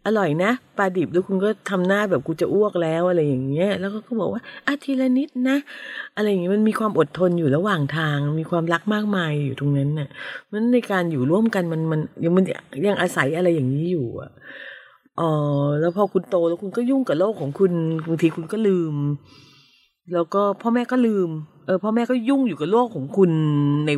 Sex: female